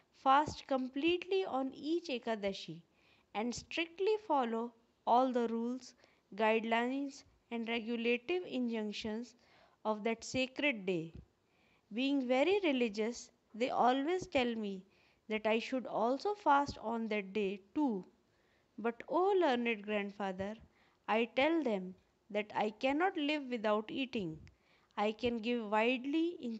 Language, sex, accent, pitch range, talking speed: Hindi, female, native, 215-280 Hz, 120 wpm